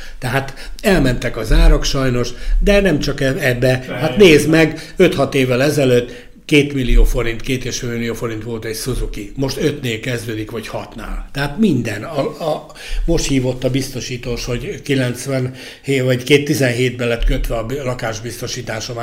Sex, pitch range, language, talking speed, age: male, 115-135 Hz, Hungarian, 150 wpm, 60-79